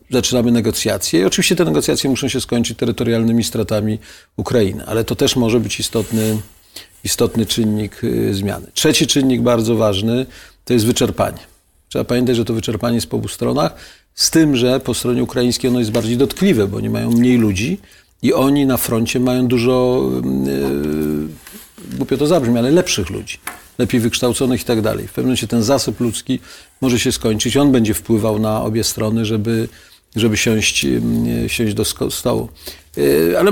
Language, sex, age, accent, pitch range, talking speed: Polish, male, 40-59, native, 110-130 Hz, 165 wpm